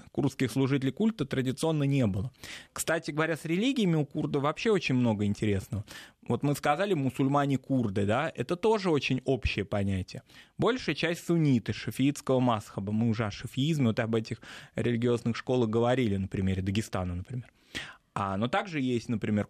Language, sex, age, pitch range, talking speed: Russian, male, 20-39, 105-135 Hz, 150 wpm